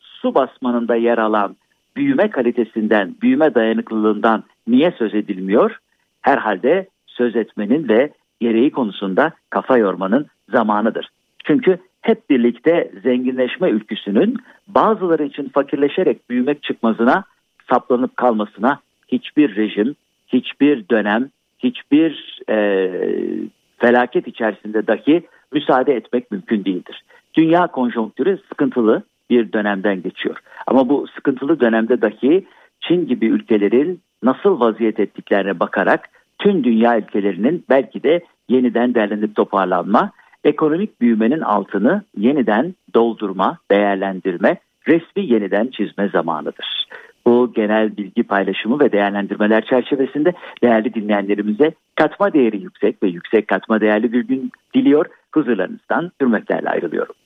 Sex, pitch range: male, 110-165 Hz